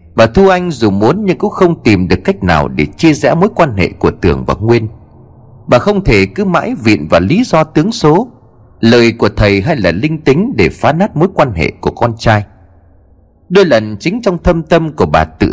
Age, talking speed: 30-49, 225 wpm